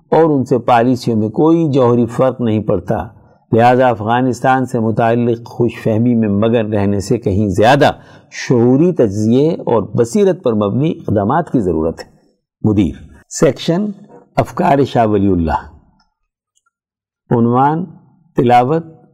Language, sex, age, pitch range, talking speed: Urdu, male, 60-79, 110-155 Hz, 125 wpm